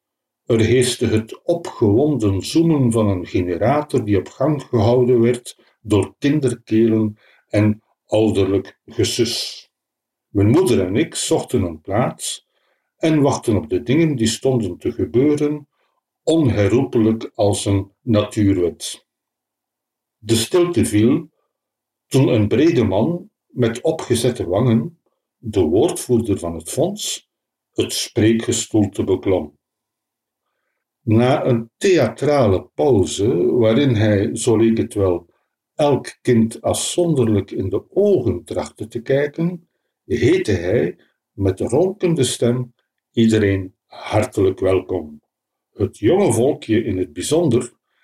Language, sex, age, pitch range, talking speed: Dutch, male, 60-79, 105-150 Hz, 110 wpm